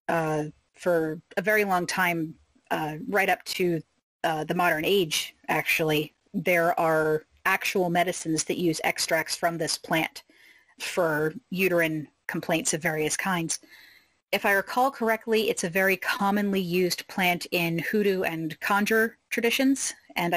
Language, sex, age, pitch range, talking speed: English, female, 30-49, 165-195 Hz, 140 wpm